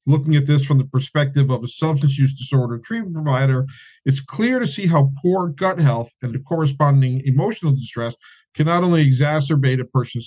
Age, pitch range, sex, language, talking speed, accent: 50-69, 130-165 Hz, male, English, 185 wpm, American